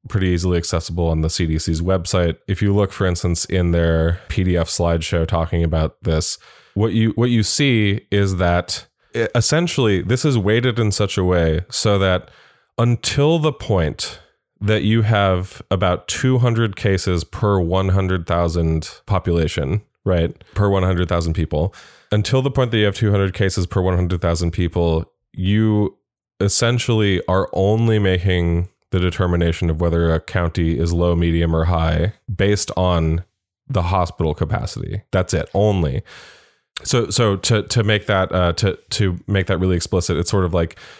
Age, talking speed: 20-39, 155 wpm